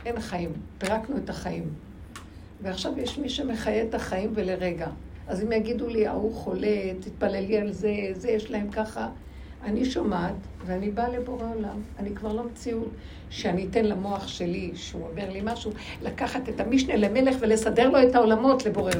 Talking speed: 165 wpm